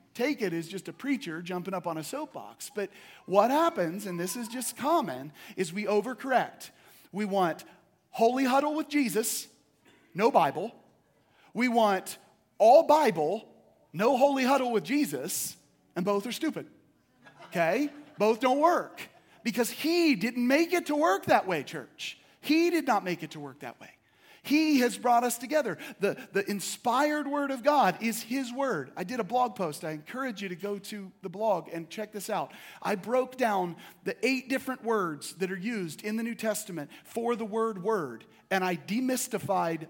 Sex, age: male, 40-59